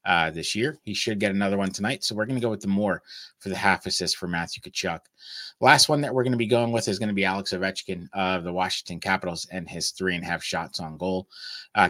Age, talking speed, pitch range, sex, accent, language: 30-49, 255 wpm, 95-115 Hz, male, American, English